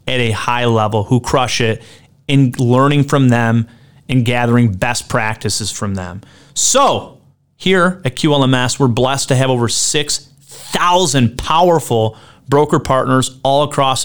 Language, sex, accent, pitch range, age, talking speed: English, male, American, 120-150 Hz, 30-49, 135 wpm